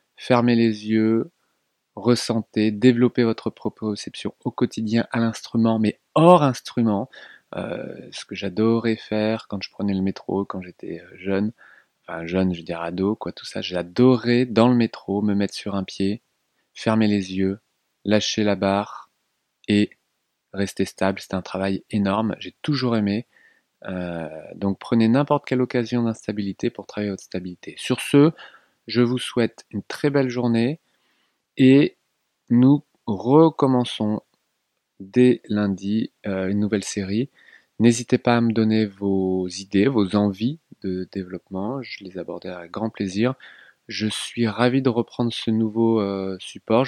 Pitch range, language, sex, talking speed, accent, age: 100-120 Hz, French, male, 145 wpm, French, 30-49